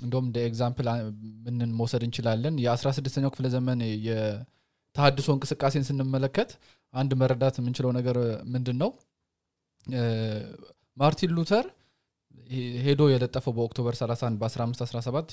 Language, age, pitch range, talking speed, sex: English, 20-39, 115-140 Hz, 110 wpm, male